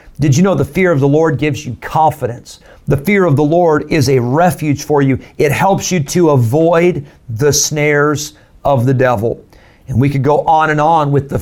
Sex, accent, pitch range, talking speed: male, American, 135-165 Hz, 210 wpm